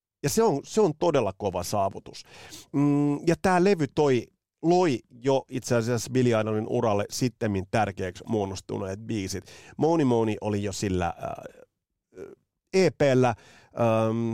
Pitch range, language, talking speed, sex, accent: 105-135 Hz, Finnish, 130 wpm, male, native